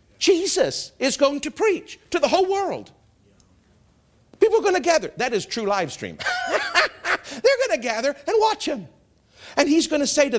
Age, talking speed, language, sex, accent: 50-69, 185 wpm, English, male, American